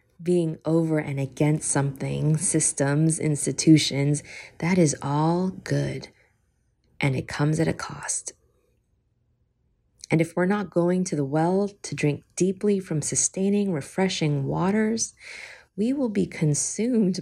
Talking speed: 125 wpm